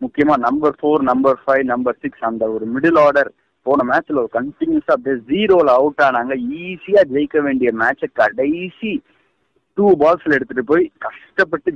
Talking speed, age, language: 150 wpm, 30-49, Tamil